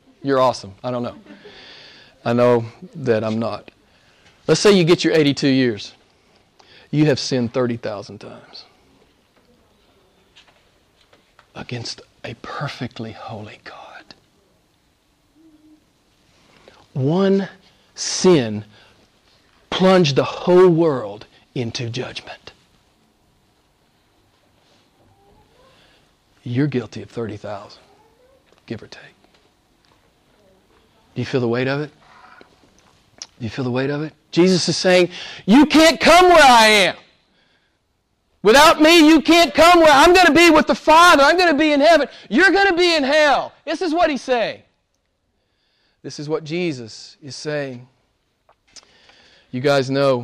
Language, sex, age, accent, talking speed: English, male, 40-59, American, 125 wpm